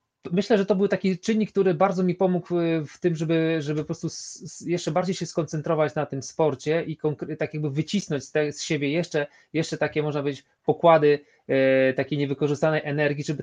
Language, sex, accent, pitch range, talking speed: Polish, male, native, 130-155 Hz, 200 wpm